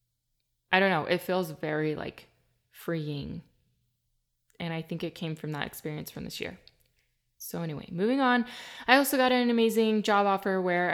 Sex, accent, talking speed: female, American, 170 wpm